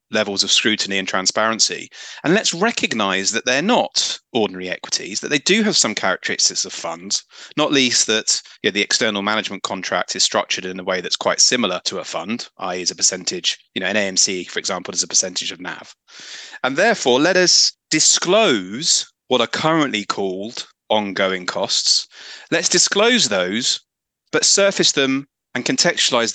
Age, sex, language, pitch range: 30-49, male, English, 105-165 Hz